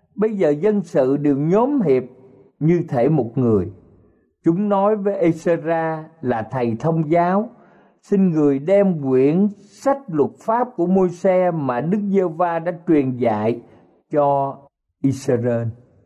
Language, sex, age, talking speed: Vietnamese, male, 50-69, 140 wpm